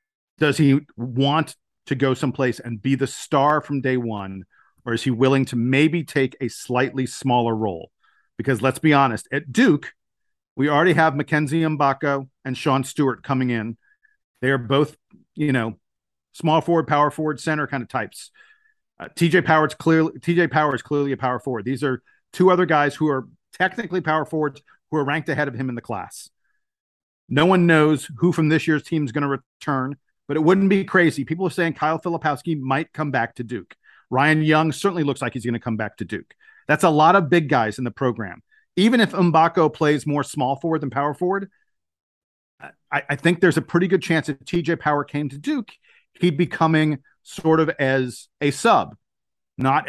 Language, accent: English, American